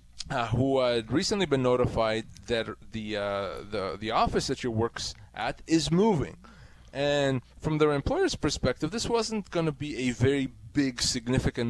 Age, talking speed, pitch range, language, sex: 20-39, 165 wpm, 125-155 Hz, English, male